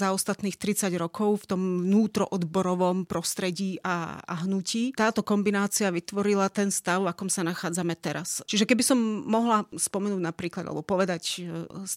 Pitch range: 175-200 Hz